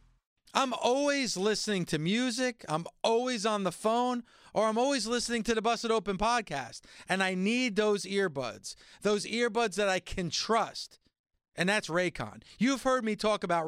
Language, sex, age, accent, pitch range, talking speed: English, male, 40-59, American, 170-230 Hz, 165 wpm